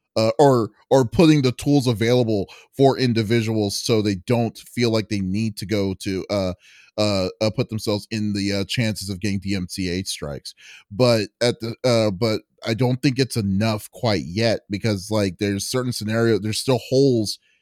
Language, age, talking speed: English, 30-49, 175 wpm